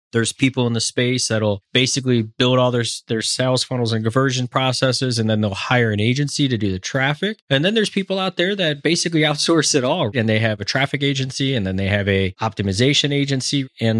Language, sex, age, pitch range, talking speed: English, male, 20-39, 100-125 Hz, 220 wpm